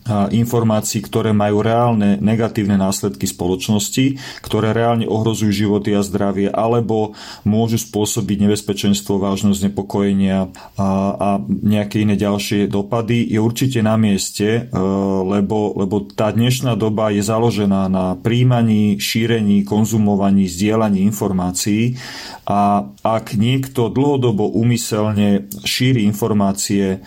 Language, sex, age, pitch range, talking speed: Slovak, male, 40-59, 100-115 Hz, 110 wpm